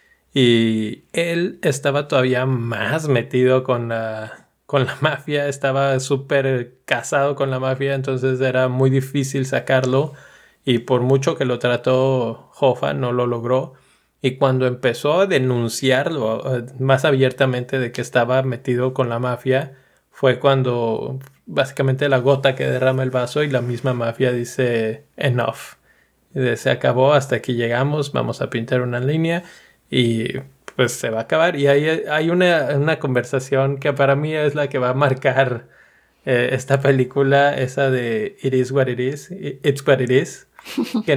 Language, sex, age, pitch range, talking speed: Spanish, male, 20-39, 125-145 Hz, 155 wpm